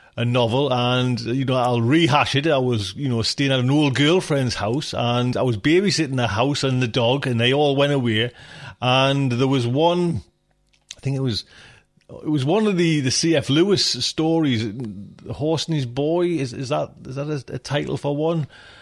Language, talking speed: English, 205 wpm